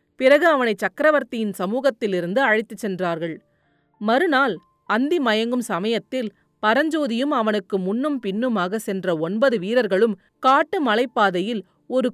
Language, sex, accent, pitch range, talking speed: Tamil, female, native, 195-260 Hz, 100 wpm